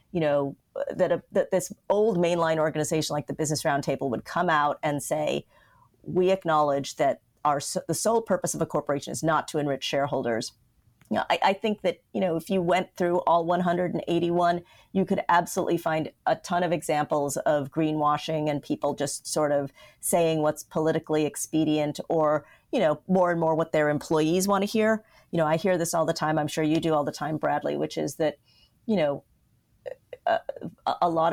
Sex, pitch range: female, 150-180 Hz